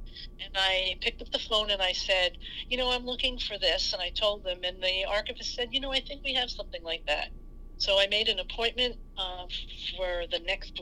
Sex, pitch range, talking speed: female, 175-220 Hz, 225 wpm